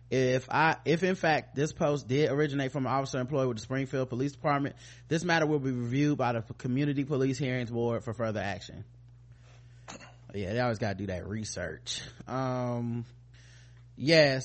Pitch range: 120-145 Hz